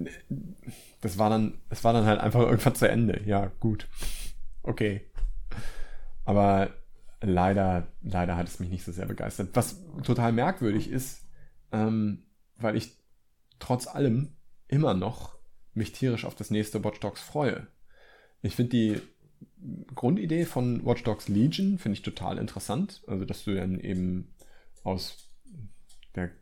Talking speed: 140 wpm